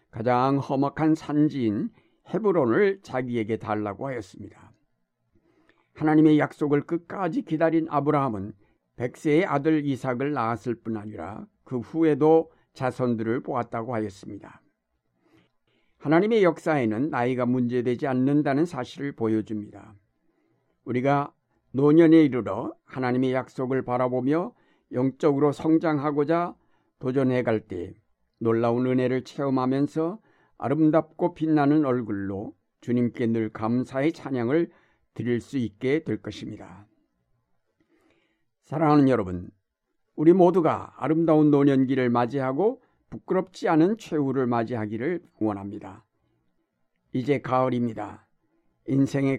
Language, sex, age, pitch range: Korean, male, 60-79, 115-155 Hz